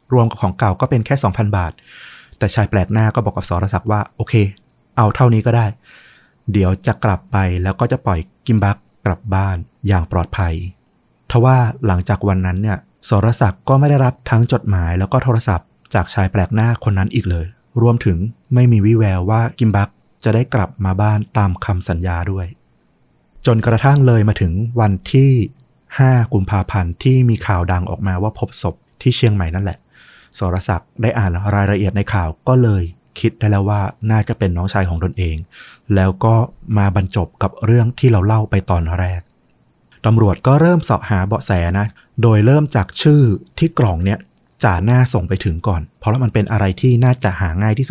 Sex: male